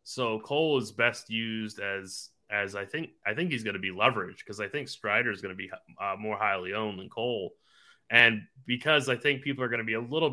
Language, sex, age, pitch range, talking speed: English, male, 30-49, 105-135 Hz, 240 wpm